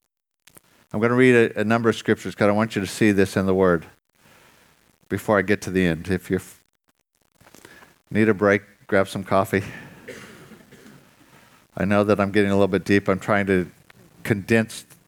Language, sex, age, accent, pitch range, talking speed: English, male, 50-69, American, 95-115 Hz, 180 wpm